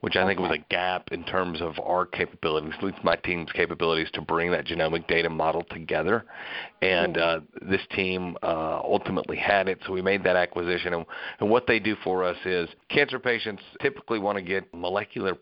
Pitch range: 85-100 Hz